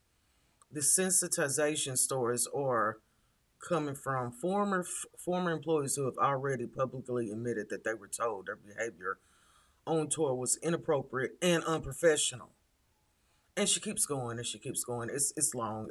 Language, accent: English, American